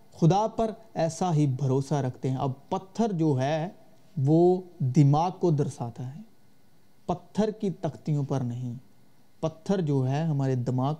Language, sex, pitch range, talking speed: Urdu, male, 140-190 Hz, 140 wpm